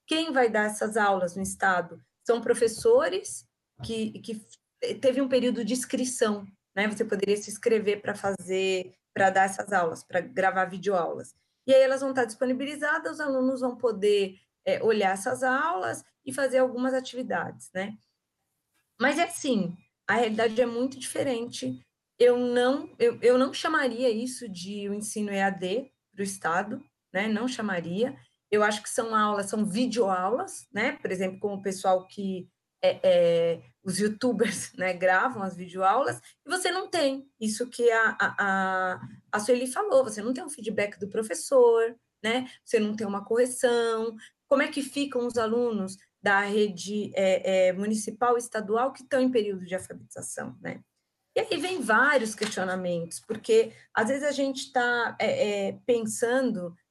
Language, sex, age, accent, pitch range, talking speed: Portuguese, female, 20-39, Brazilian, 195-255 Hz, 160 wpm